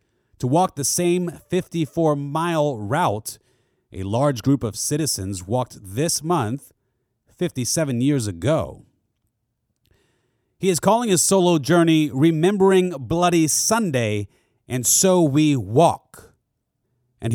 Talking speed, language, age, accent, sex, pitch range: 105 wpm, English, 30-49, American, male, 120-155 Hz